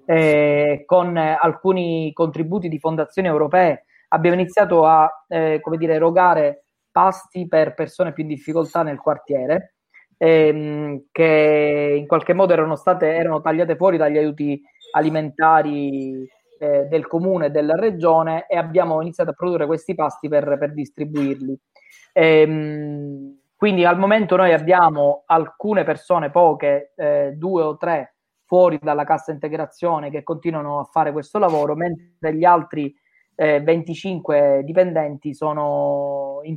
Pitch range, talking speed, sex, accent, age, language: 145-170 Hz, 130 wpm, male, native, 20-39, Italian